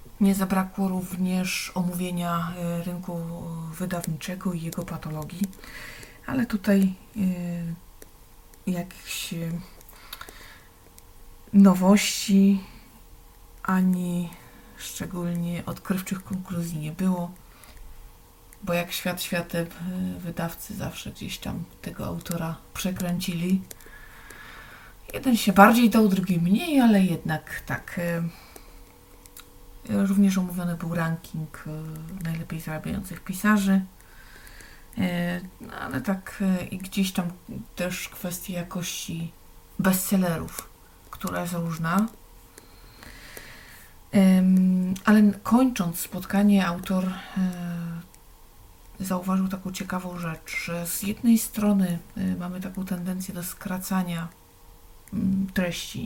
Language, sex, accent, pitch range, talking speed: Polish, female, native, 170-190 Hz, 80 wpm